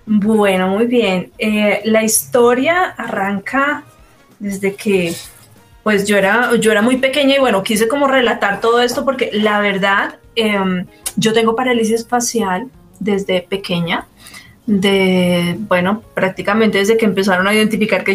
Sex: female